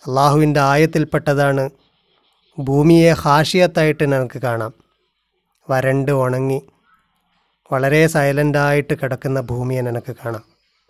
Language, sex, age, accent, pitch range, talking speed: Malayalam, male, 30-49, native, 135-165 Hz, 75 wpm